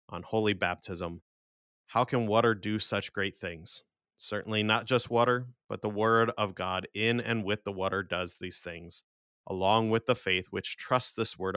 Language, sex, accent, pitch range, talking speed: English, male, American, 95-110 Hz, 180 wpm